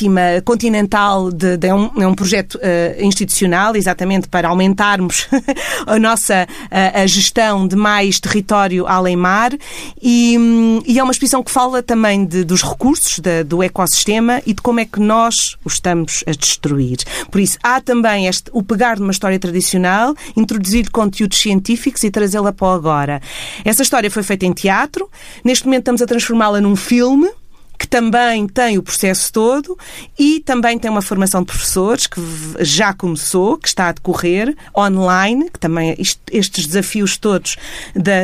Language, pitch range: Portuguese, 185-240 Hz